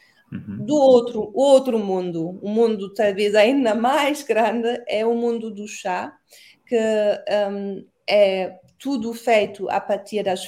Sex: female